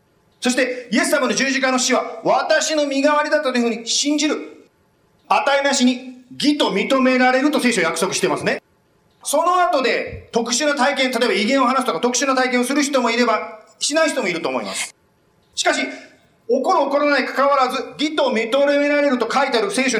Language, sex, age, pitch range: Japanese, male, 40-59, 225-295 Hz